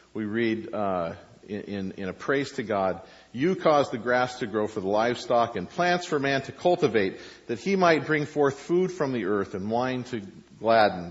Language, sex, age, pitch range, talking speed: English, male, 50-69, 105-130 Hz, 200 wpm